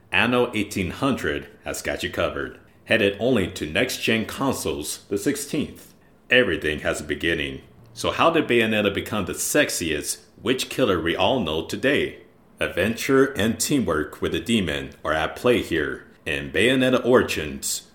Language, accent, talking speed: English, American, 145 wpm